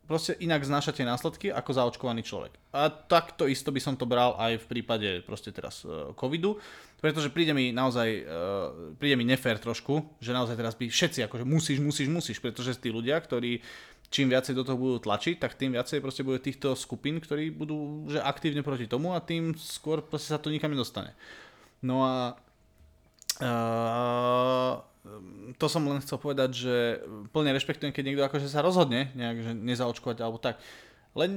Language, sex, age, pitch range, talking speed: Slovak, male, 20-39, 125-150 Hz, 170 wpm